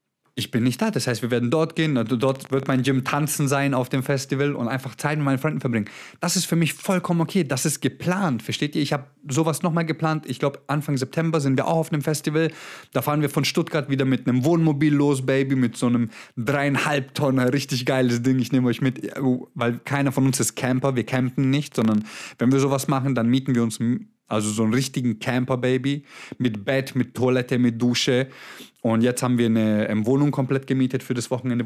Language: German